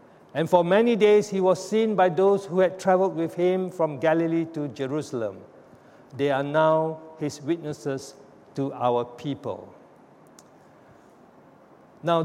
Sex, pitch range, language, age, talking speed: male, 155-195 Hz, English, 60-79, 130 wpm